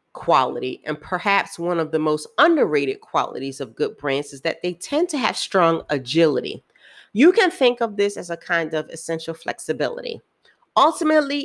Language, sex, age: English, female, 40-59